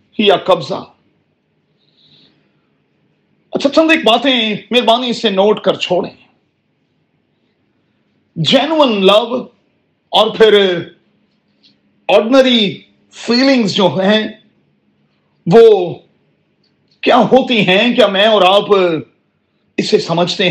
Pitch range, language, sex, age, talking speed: 195-250 Hz, Urdu, male, 40-59, 85 wpm